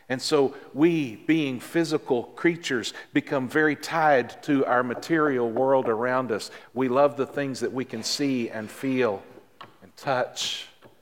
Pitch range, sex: 125-170 Hz, male